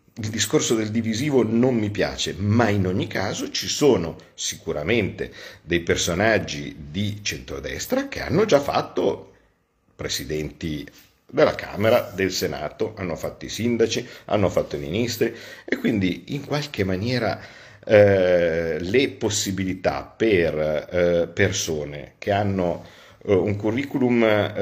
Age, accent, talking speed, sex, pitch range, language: 50-69, native, 120 wpm, male, 90-120 Hz, Italian